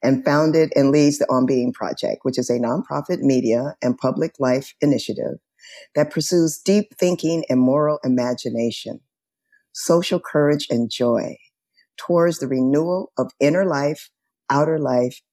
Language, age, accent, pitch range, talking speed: English, 50-69, American, 130-170 Hz, 140 wpm